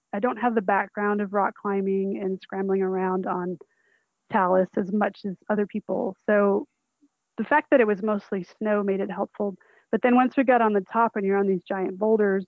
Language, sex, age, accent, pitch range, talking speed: English, female, 20-39, American, 190-225 Hz, 205 wpm